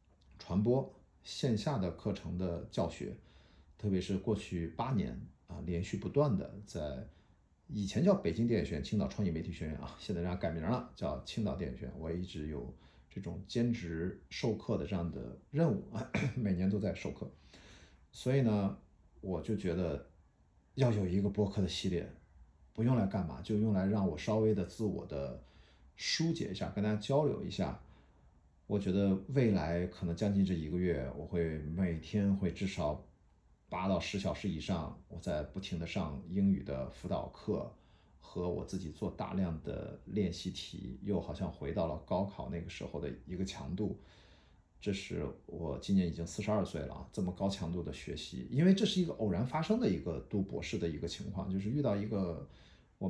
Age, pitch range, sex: 50-69, 80-105 Hz, male